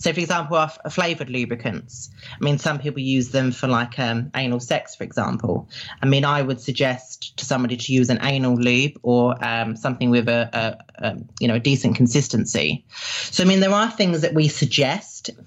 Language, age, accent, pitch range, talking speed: English, 30-49, British, 120-145 Hz, 205 wpm